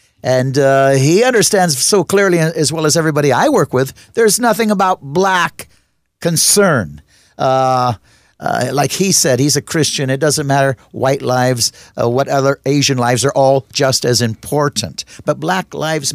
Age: 60-79